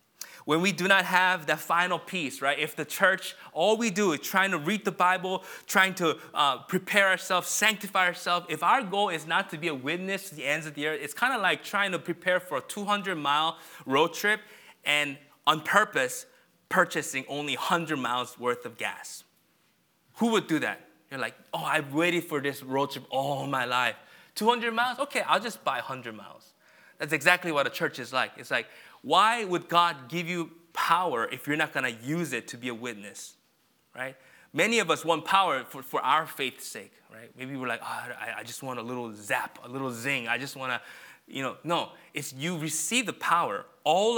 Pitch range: 140-185 Hz